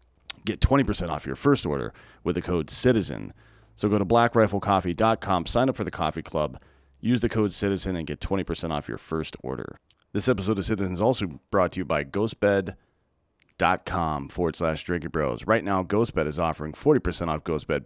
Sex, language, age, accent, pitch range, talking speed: male, English, 30-49, American, 85-110 Hz, 180 wpm